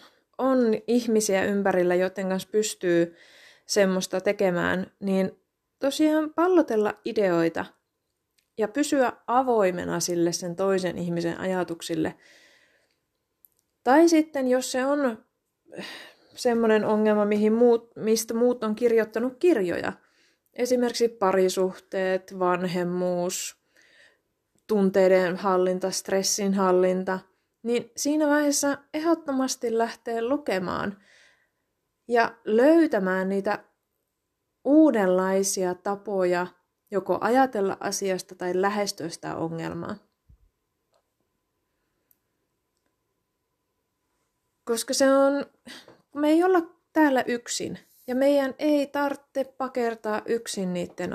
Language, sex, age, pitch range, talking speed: Finnish, female, 20-39, 185-255 Hz, 85 wpm